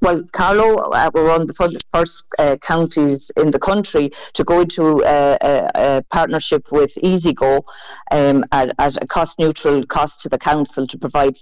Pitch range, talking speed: 140-165 Hz, 175 wpm